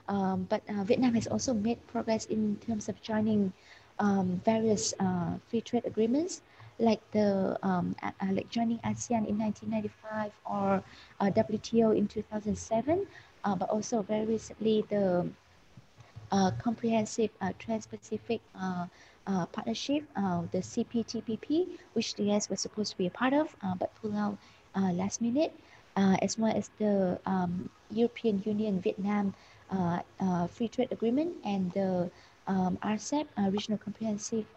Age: 20-39